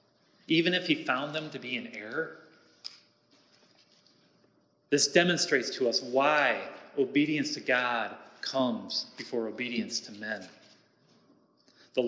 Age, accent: 30-49, American